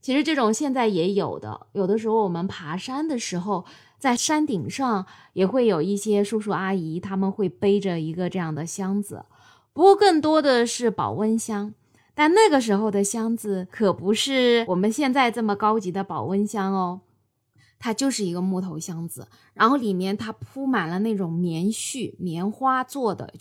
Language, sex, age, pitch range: Chinese, female, 20-39, 185-255 Hz